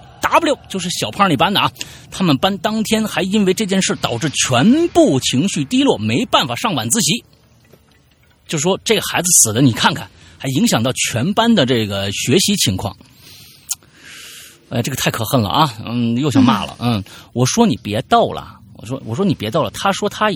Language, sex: Chinese, male